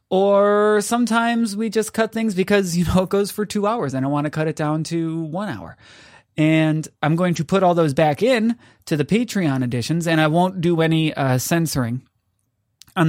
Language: English